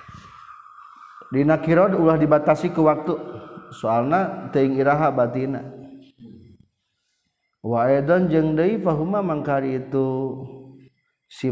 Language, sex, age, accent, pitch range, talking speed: Indonesian, male, 50-69, native, 110-150 Hz, 80 wpm